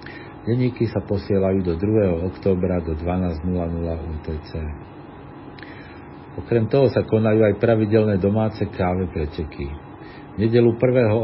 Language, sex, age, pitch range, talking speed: Slovak, male, 50-69, 95-115 Hz, 110 wpm